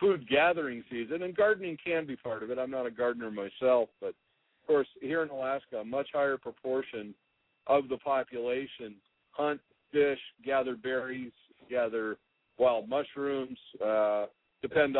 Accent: American